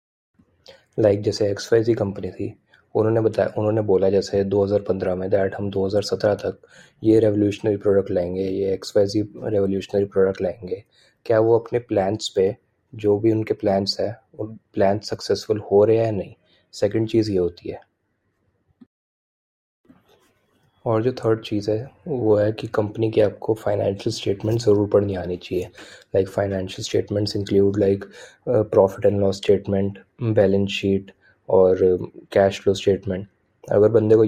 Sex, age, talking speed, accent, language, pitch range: male, 20-39, 145 wpm, native, Hindi, 95-110 Hz